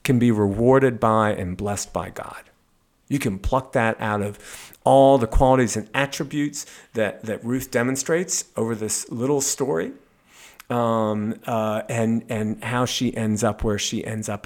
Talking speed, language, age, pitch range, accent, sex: 160 wpm, English, 40-59, 110-140 Hz, American, male